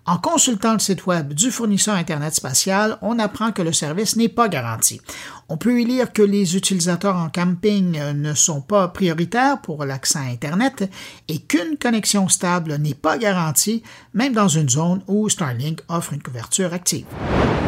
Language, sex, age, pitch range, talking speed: French, male, 60-79, 160-215 Hz, 175 wpm